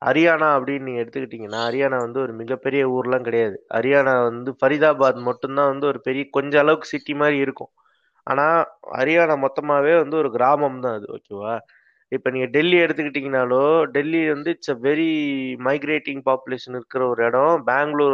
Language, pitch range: Tamil, 130-160 Hz